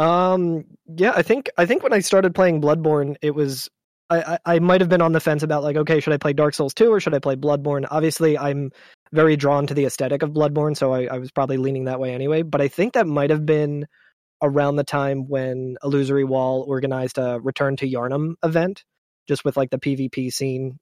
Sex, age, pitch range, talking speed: male, 20-39, 135-160 Hz, 230 wpm